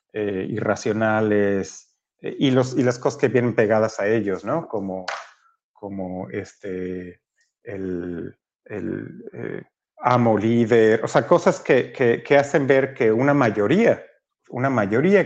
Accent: Mexican